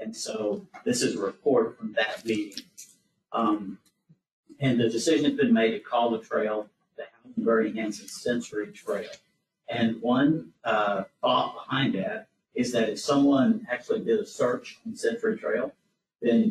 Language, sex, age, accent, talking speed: English, male, 50-69, American, 155 wpm